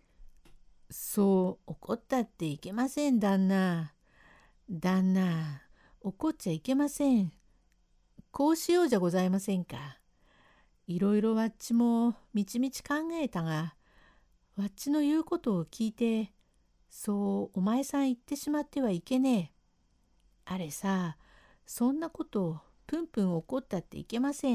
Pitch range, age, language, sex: 175-255 Hz, 60-79, Japanese, female